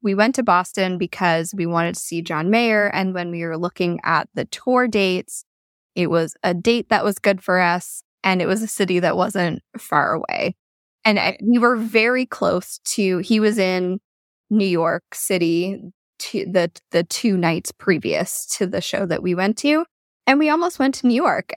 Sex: female